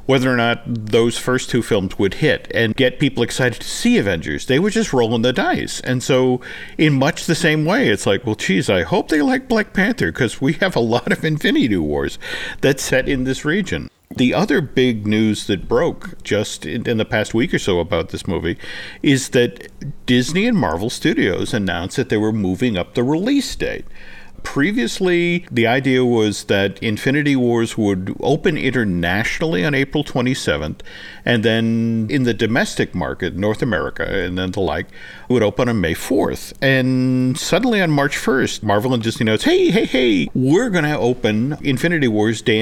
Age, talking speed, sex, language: 50-69, 185 wpm, male, English